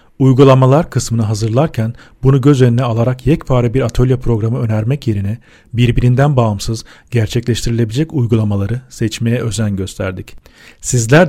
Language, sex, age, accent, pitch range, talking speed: Turkish, male, 40-59, native, 110-130 Hz, 110 wpm